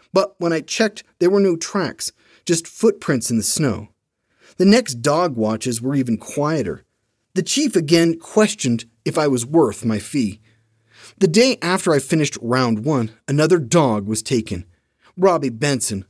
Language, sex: English, male